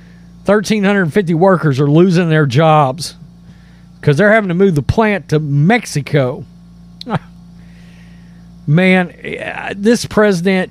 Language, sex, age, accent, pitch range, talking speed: English, male, 40-59, American, 170-220 Hz, 100 wpm